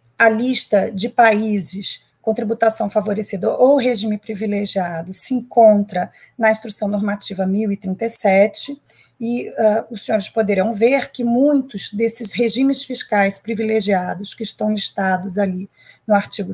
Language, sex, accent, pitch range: Portuguese, female, Brazilian, 205-260 Hz